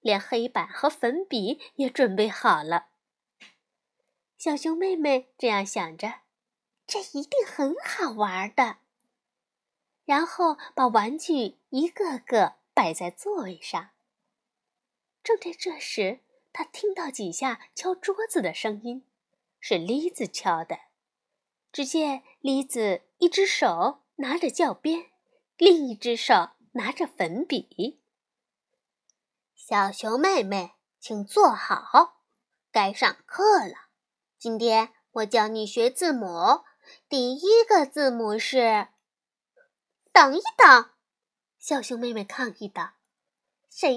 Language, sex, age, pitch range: Chinese, female, 20-39, 230-345 Hz